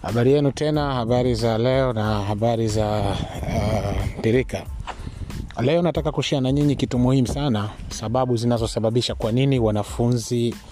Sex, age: male, 30-49